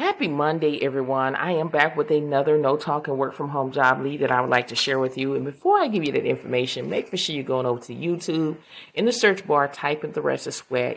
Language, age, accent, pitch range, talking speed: English, 30-49, American, 120-160 Hz, 270 wpm